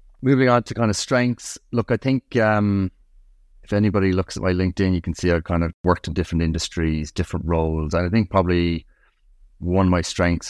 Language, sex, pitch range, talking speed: English, male, 80-95 Hz, 205 wpm